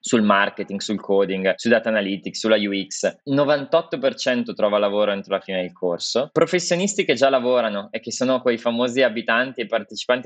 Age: 20-39